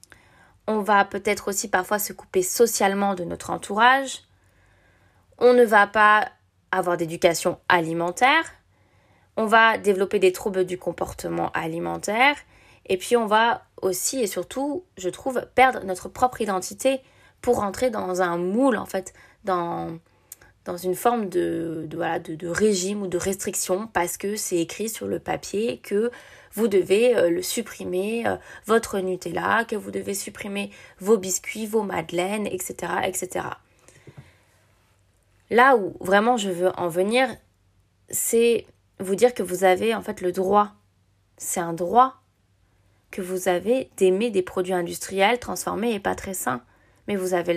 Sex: female